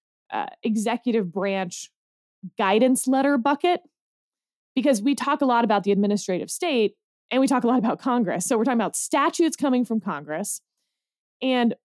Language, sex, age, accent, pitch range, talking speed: English, female, 20-39, American, 200-265 Hz, 155 wpm